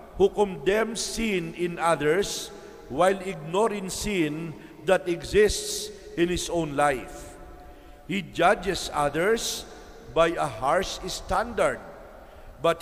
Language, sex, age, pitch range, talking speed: English, male, 50-69, 160-200 Hz, 105 wpm